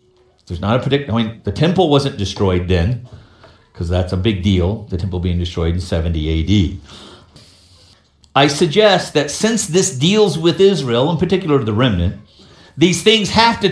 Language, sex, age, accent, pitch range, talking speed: English, male, 50-69, American, 100-165 Hz, 170 wpm